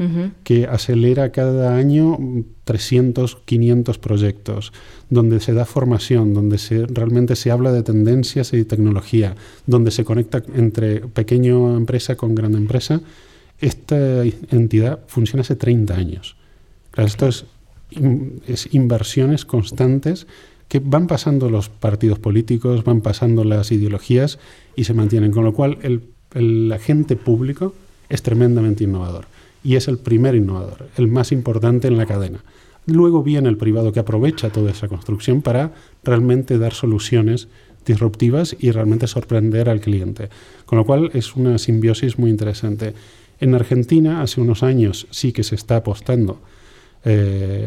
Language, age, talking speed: English, 30-49, 145 wpm